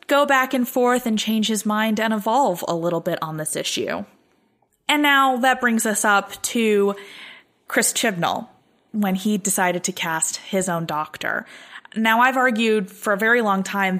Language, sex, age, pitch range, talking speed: English, female, 20-39, 175-205 Hz, 175 wpm